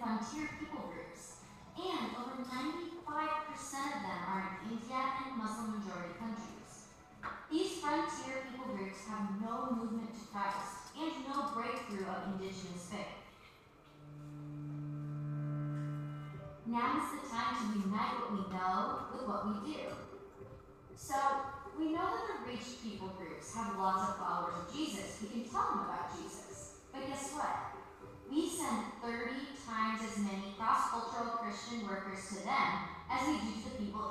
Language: English